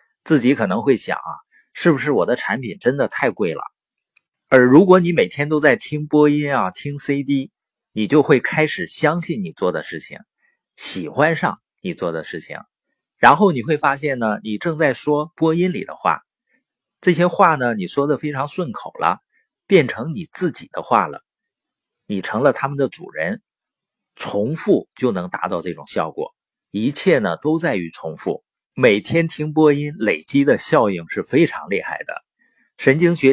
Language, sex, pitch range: Chinese, male, 130-175 Hz